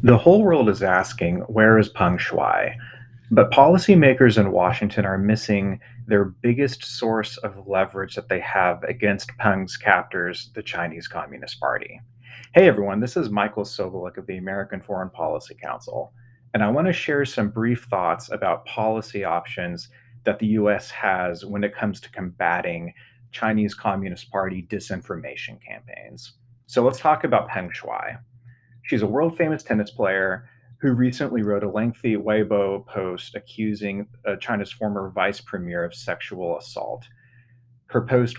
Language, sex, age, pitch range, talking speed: English, male, 30-49, 100-125 Hz, 150 wpm